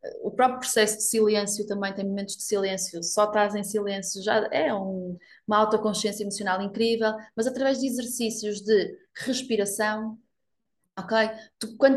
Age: 20-39